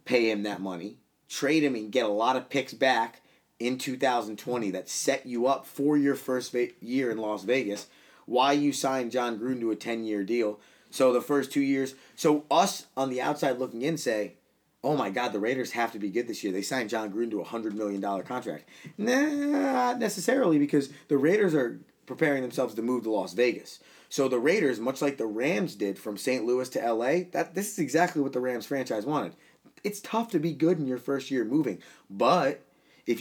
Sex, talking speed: male, 210 wpm